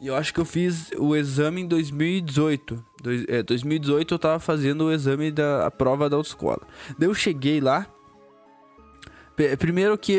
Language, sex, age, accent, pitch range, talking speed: Portuguese, male, 10-29, Brazilian, 140-185 Hz, 175 wpm